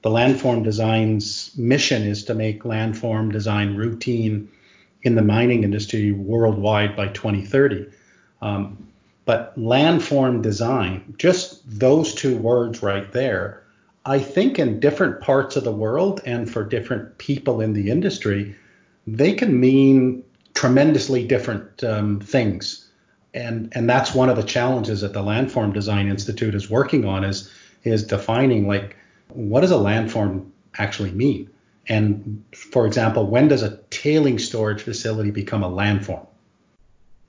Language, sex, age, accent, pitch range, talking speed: English, male, 40-59, American, 105-125 Hz, 140 wpm